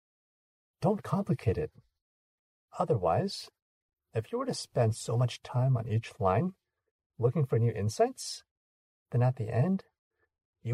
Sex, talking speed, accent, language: male, 135 wpm, American, English